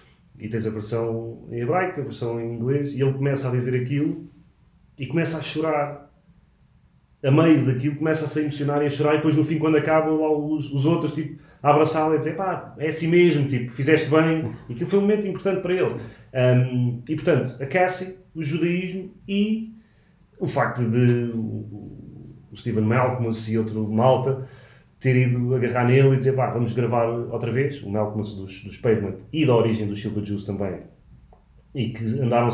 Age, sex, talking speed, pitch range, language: 30-49, male, 190 wpm, 115-155 Hz, English